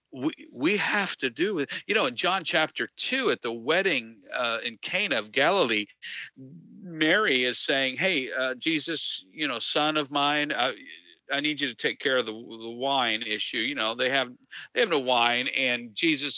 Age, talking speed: 50-69, 195 wpm